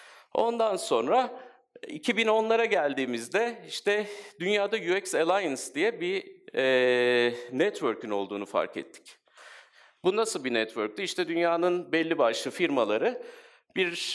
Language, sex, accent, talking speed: Turkish, male, native, 105 wpm